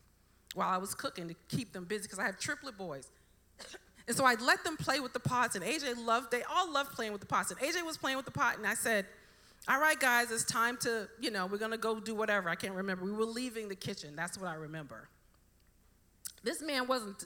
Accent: American